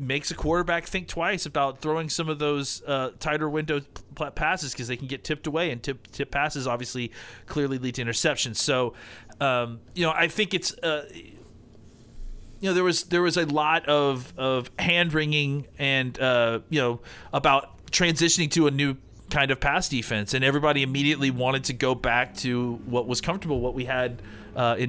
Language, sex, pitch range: English, male, 125-160 Hz